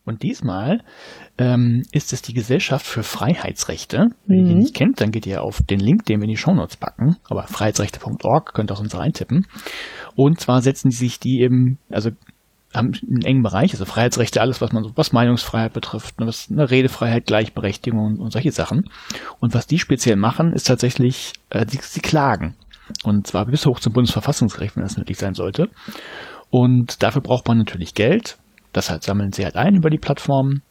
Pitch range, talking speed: 110-130 Hz, 195 wpm